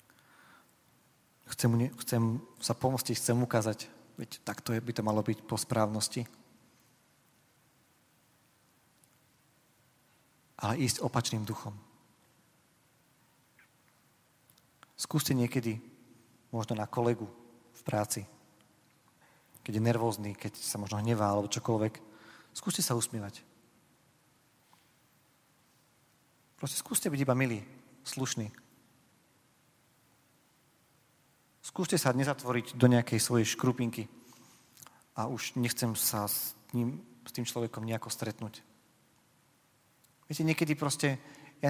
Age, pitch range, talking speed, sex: 40-59, 110-135 Hz, 95 wpm, male